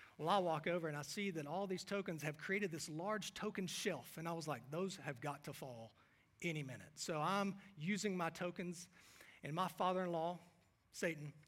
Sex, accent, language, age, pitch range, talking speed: male, American, English, 40-59, 150-200 Hz, 195 wpm